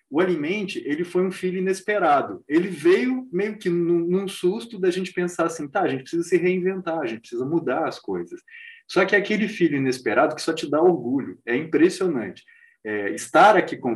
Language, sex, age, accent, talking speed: Portuguese, male, 20-39, Brazilian, 200 wpm